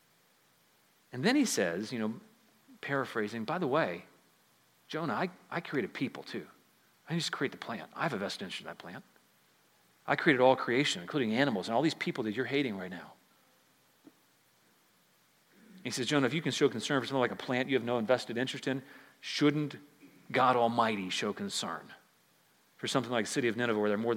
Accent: American